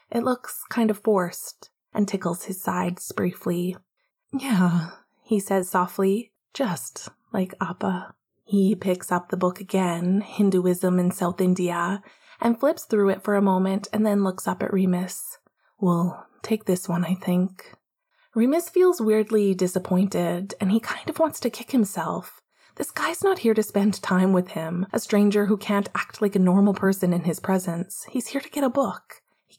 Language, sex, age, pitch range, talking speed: English, female, 20-39, 185-225 Hz, 175 wpm